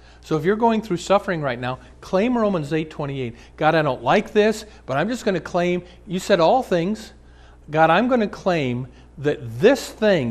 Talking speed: 200 wpm